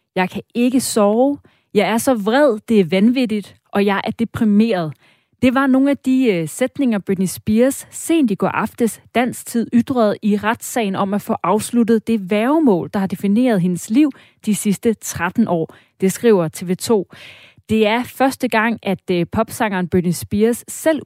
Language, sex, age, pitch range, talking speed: Danish, female, 30-49, 185-235 Hz, 165 wpm